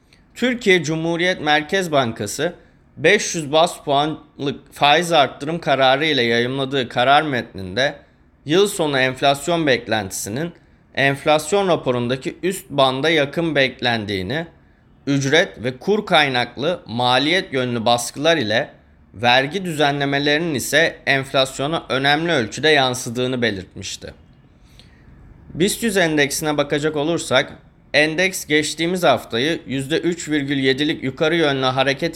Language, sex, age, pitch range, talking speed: Turkish, male, 30-49, 130-170 Hz, 95 wpm